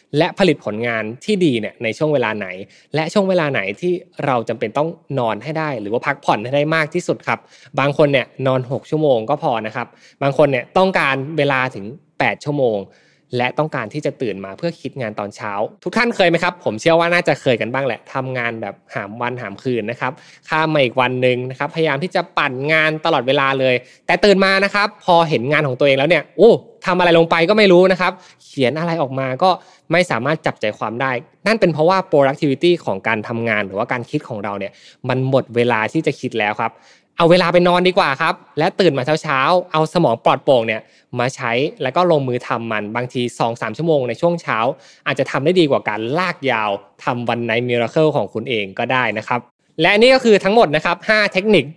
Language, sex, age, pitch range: Thai, male, 20-39, 120-170 Hz